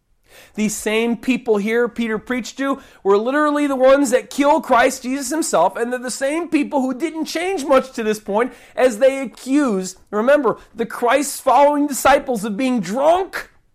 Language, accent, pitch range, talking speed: English, American, 200-285 Hz, 170 wpm